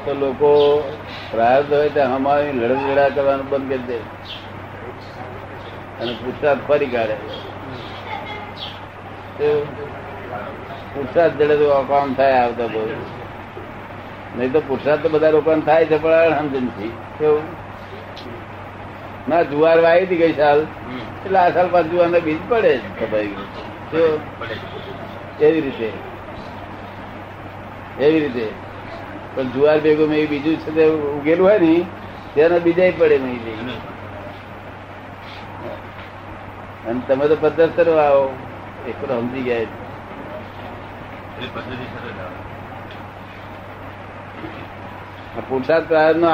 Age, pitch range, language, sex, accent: 60-79, 105-150 Hz, Gujarati, male, native